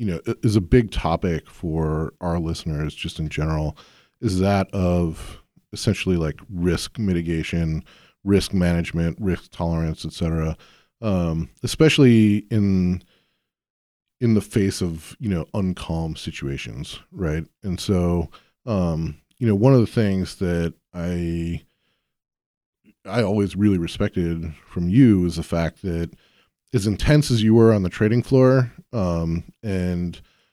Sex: male